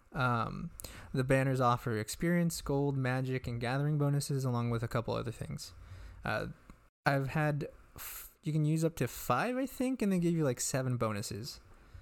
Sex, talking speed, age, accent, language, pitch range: male, 170 wpm, 20-39, American, English, 120-155 Hz